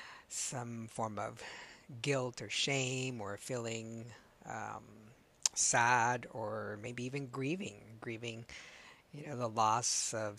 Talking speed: 115 wpm